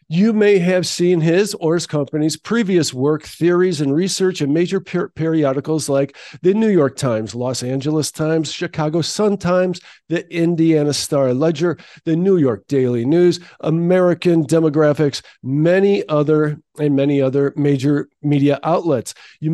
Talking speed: 140 wpm